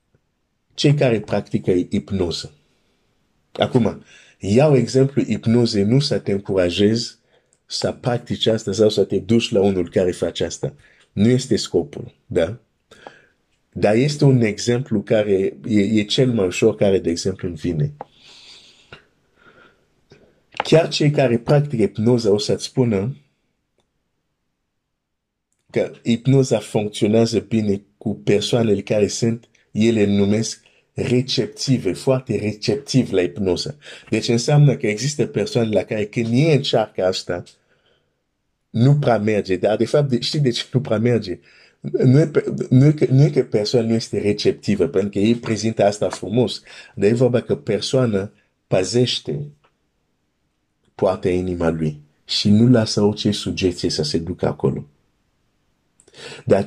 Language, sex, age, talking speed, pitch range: Romanian, male, 50-69, 130 wpm, 100-125 Hz